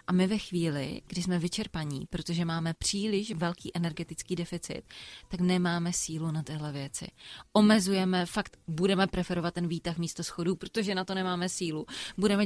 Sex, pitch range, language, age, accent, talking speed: female, 165-195 Hz, Czech, 20-39, native, 160 wpm